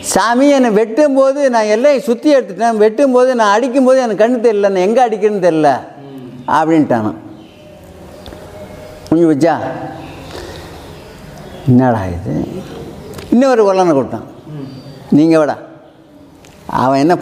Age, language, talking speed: 60-79, Tamil, 90 wpm